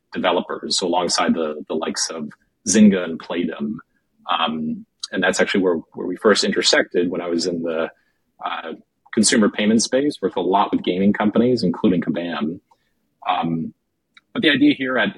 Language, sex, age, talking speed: English, male, 40-59, 165 wpm